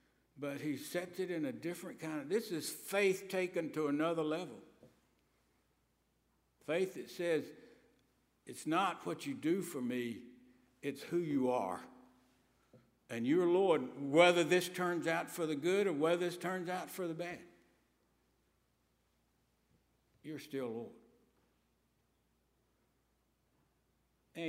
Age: 60-79